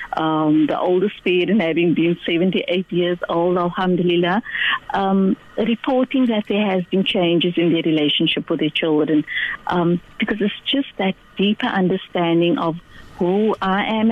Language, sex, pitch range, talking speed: English, female, 170-220 Hz, 145 wpm